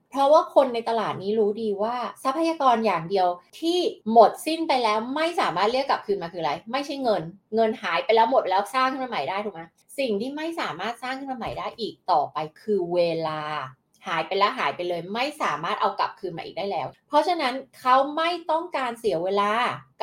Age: 20-39